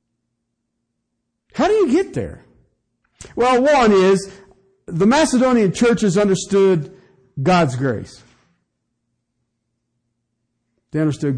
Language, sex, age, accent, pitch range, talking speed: English, male, 50-69, American, 120-165 Hz, 85 wpm